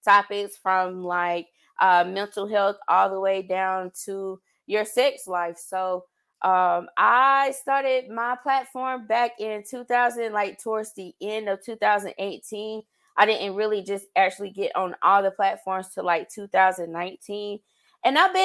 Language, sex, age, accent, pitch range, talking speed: English, female, 20-39, American, 185-225 Hz, 135 wpm